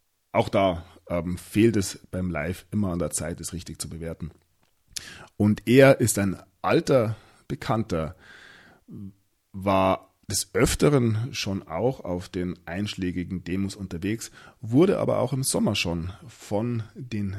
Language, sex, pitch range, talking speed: German, male, 90-115 Hz, 135 wpm